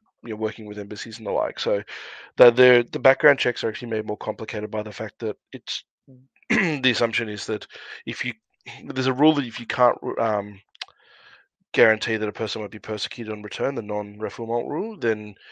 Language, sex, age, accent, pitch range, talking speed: English, male, 20-39, Australian, 105-115 Hz, 195 wpm